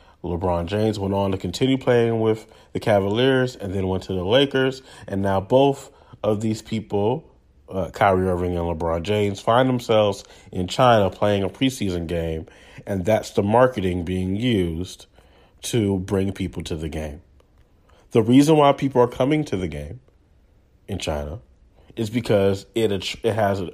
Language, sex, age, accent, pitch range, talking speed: English, male, 30-49, American, 90-130 Hz, 160 wpm